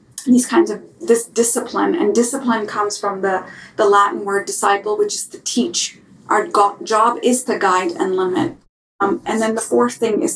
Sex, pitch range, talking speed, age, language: female, 205-320 Hz, 185 wpm, 30-49, English